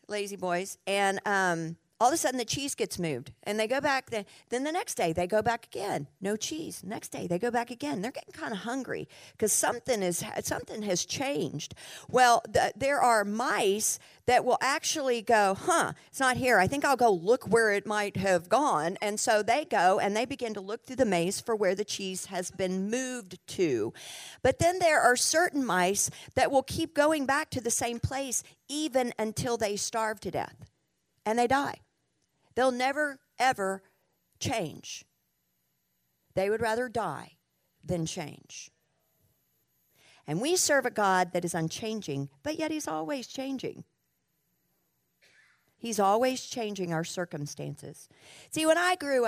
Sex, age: female, 50-69